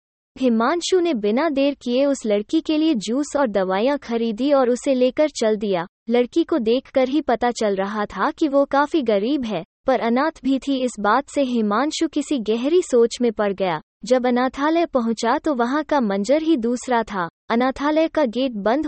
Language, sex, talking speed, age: Hindi, female, 190 wpm, 20-39